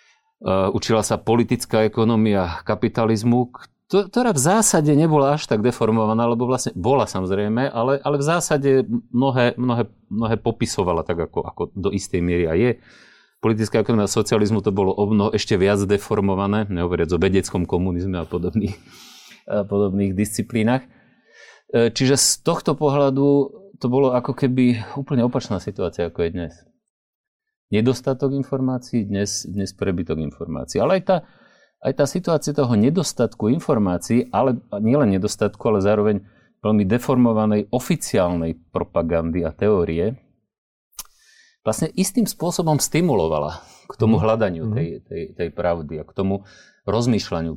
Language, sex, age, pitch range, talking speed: Slovak, male, 30-49, 100-130 Hz, 130 wpm